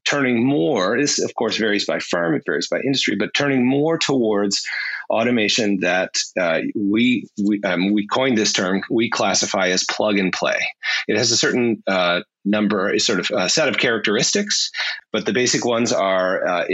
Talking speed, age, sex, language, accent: 185 wpm, 30-49, male, English, American